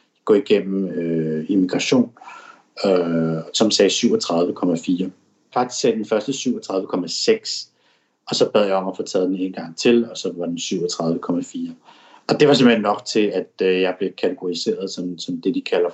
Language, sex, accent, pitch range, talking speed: Danish, male, native, 85-110 Hz, 175 wpm